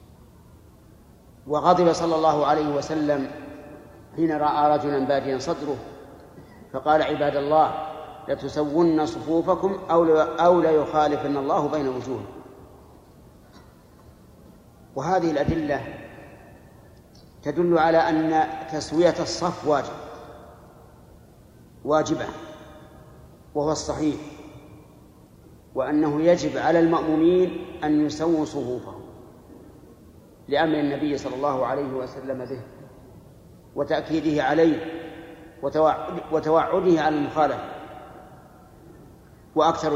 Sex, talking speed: male, 80 wpm